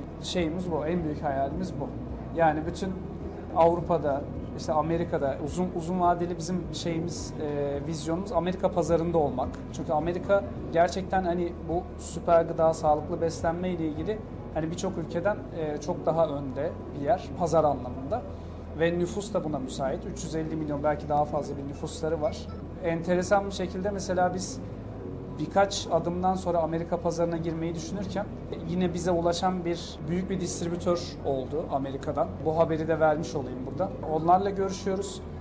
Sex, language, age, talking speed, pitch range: male, Turkish, 40-59, 145 wpm, 155-175 Hz